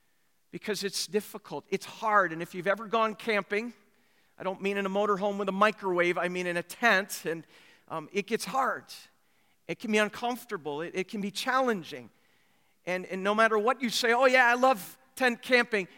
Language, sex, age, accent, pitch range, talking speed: English, male, 50-69, American, 175-220 Hz, 195 wpm